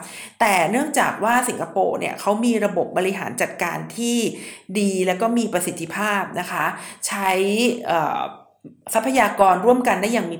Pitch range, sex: 185-230 Hz, female